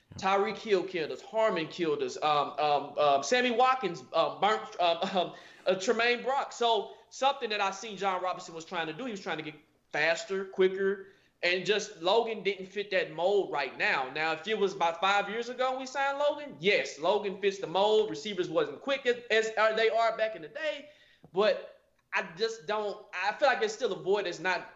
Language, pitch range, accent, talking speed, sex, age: English, 190-255 Hz, American, 210 wpm, male, 20-39